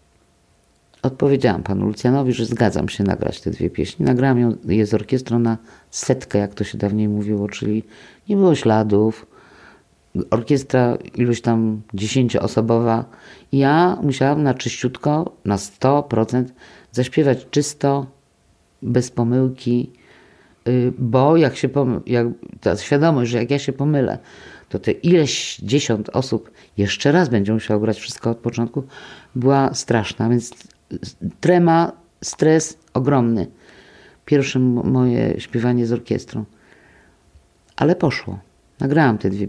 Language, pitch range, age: Polish, 110-140 Hz, 50-69